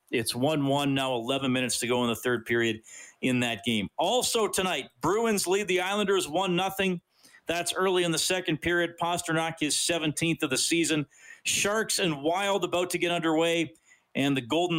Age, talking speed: 40-59, 175 wpm